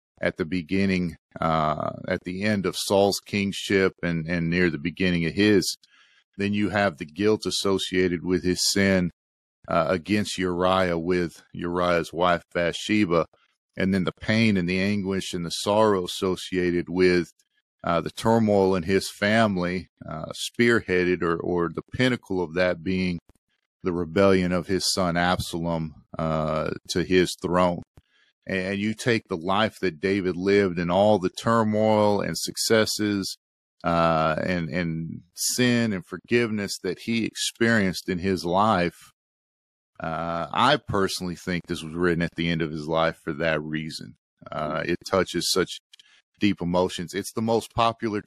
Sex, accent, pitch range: male, American, 85-105 Hz